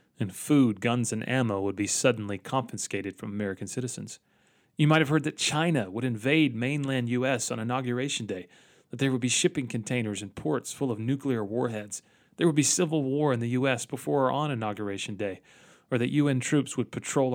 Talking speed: 195 wpm